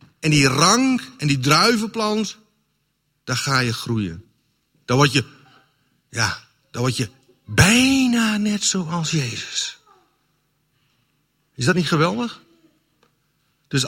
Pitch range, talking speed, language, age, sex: 120-170 Hz, 115 wpm, Dutch, 60-79, male